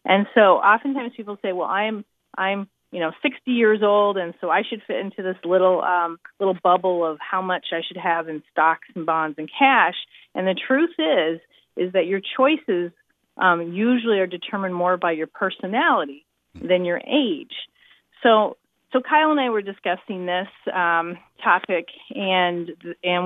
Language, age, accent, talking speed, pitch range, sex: English, 40-59, American, 175 wpm, 175-220 Hz, female